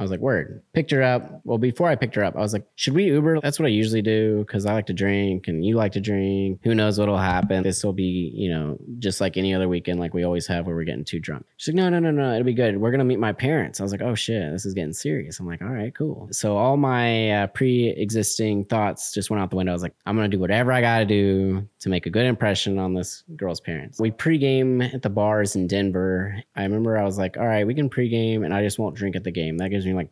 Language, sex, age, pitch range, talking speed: English, male, 20-39, 95-125 Hz, 285 wpm